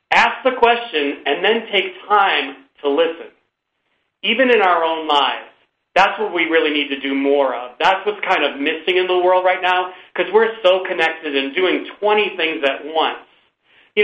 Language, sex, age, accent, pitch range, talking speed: English, male, 40-59, American, 155-210 Hz, 190 wpm